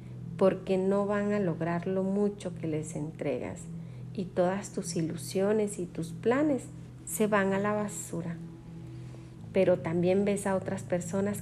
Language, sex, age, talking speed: Spanish, female, 40-59, 145 wpm